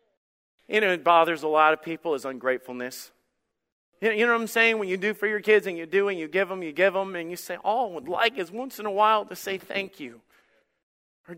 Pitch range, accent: 160-220 Hz, American